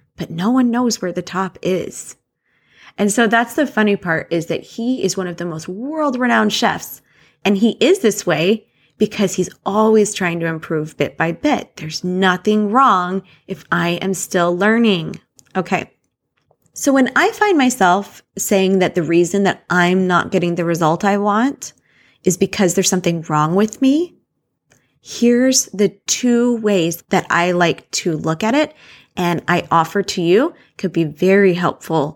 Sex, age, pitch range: female, 20-39, 175-235 Hz